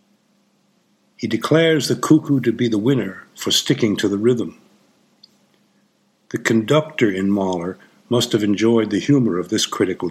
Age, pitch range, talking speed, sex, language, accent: 60-79, 100-125 Hz, 150 wpm, male, English, American